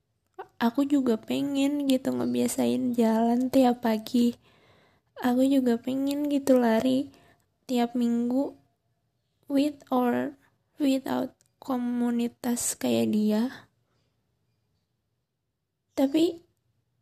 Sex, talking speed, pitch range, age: female, 80 wpm, 215-265 Hz, 20-39